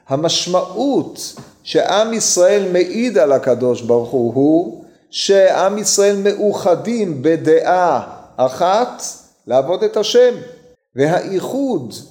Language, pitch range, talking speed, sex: Hebrew, 130-180 Hz, 85 wpm, male